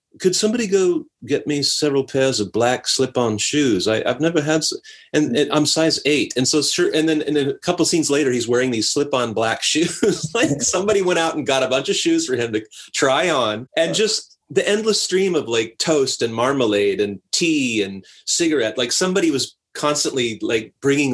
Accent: American